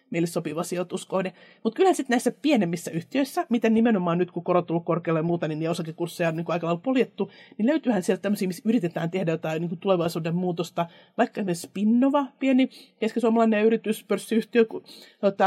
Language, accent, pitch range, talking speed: Finnish, native, 170-215 Hz, 175 wpm